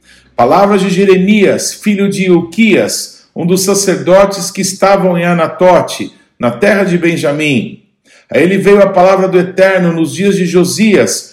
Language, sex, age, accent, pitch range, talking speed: Portuguese, male, 50-69, Brazilian, 175-205 Hz, 150 wpm